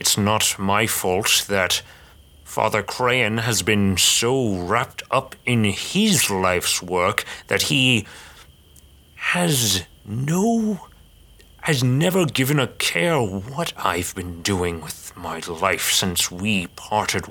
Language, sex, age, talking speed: English, male, 30-49, 120 wpm